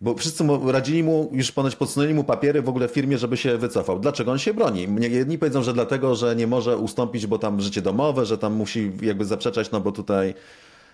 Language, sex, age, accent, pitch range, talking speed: Polish, male, 30-49, native, 120-145 Hz, 220 wpm